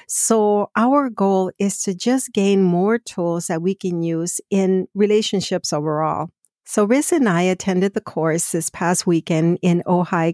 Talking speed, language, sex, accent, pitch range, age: 165 wpm, English, female, American, 165-200 Hz, 50-69